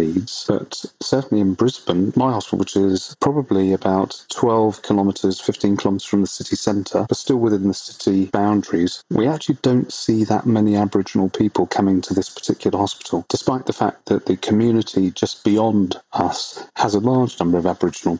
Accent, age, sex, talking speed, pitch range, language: British, 40-59, male, 170 wpm, 95-110 Hz, English